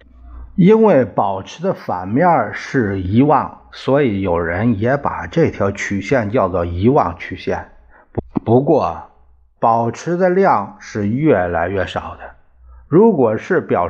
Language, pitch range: Chinese, 85-135 Hz